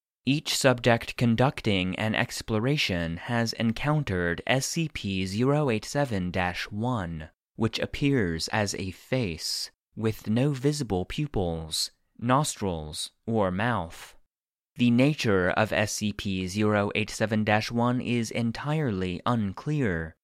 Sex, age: male, 30-49